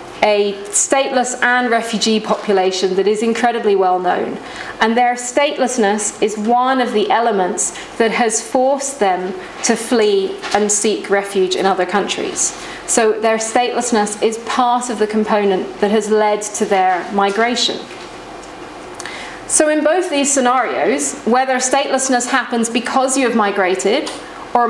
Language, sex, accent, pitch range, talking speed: English, female, British, 210-255 Hz, 140 wpm